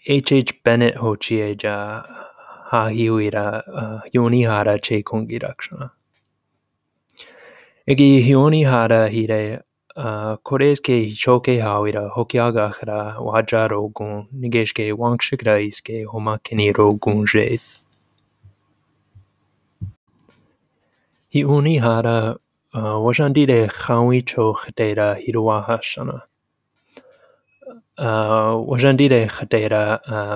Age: 20-39